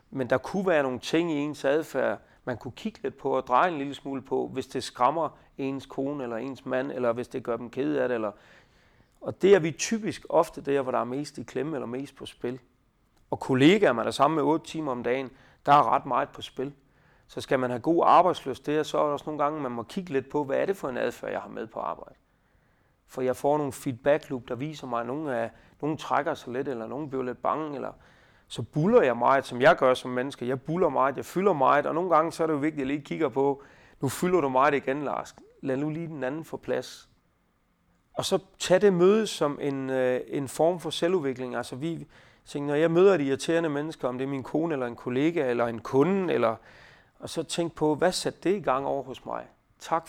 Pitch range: 130-160 Hz